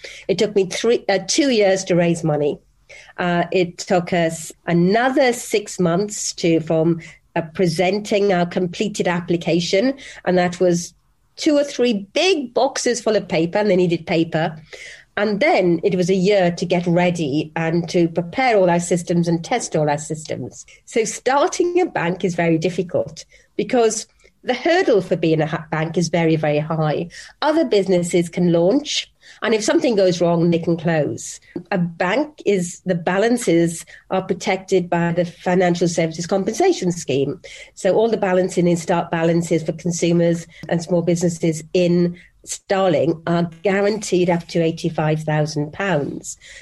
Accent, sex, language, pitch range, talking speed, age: British, female, English, 170-205 Hz, 155 wpm, 40-59